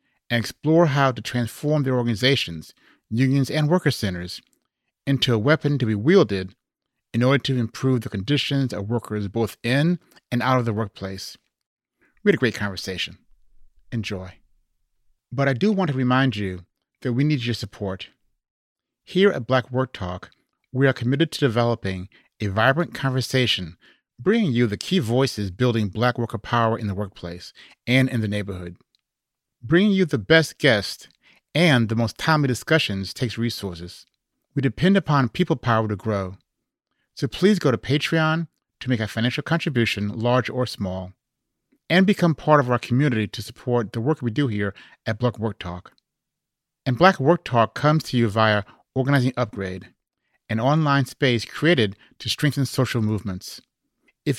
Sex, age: male, 30-49